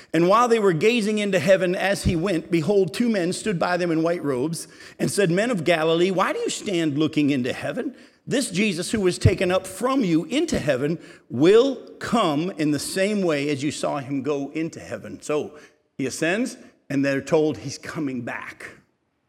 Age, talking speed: 50-69, 195 wpm